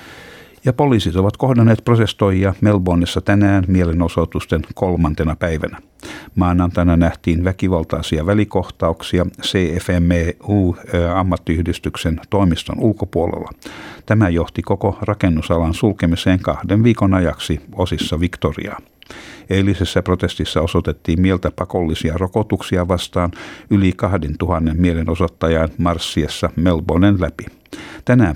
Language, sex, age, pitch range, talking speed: Finnish, male, 60-79, 80-95 Hz, 85 wpm